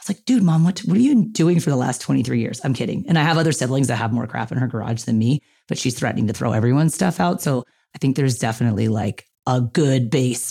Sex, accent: female, American